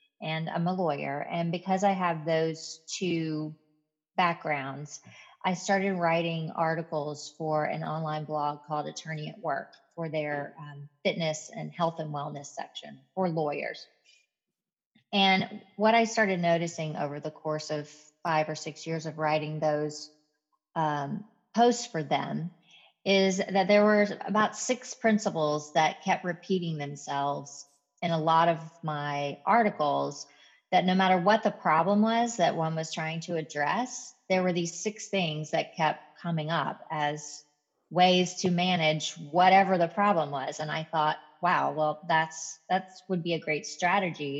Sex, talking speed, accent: female, 155 wpm, American